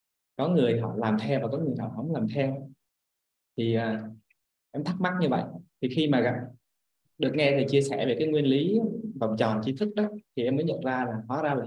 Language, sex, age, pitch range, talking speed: Vietnamese, male, 20-39, 120-165 Hz, 235 wpm